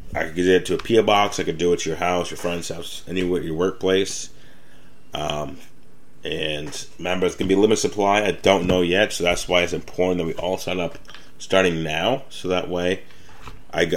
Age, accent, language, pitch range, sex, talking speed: 30-49, American, English, 80-95 Hz, male, 210 wpm